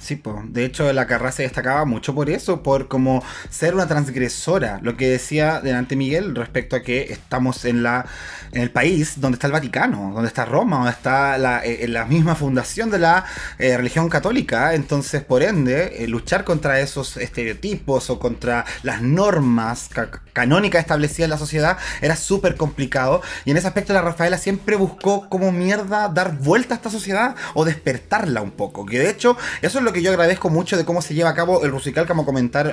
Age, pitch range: 20-39, 130-185 Hz